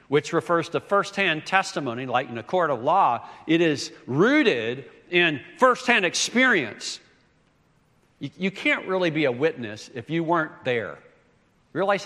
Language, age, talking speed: English, 60-79, 140 wpm